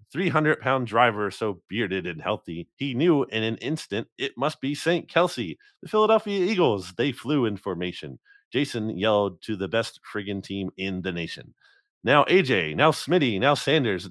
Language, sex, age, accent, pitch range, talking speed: English, male, 30-49, American, 100-140 Hz, 165 wpm